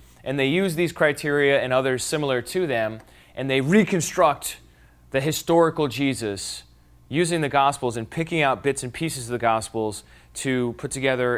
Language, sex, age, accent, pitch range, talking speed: English, male, 30-49, American, 105-150 Hz, 165 wpm